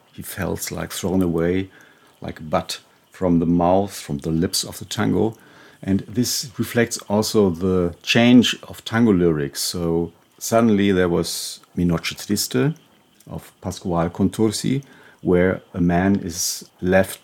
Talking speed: 140 wpm